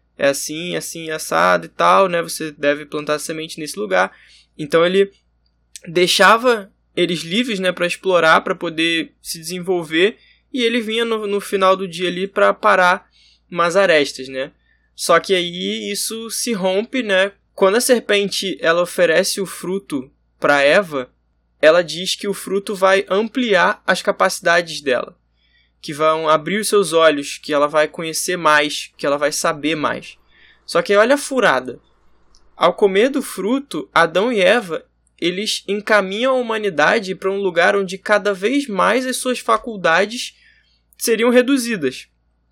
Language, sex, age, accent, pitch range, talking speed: Portuguese, male, 20-39, Brazilian, 160-215 Hz, 150 wpm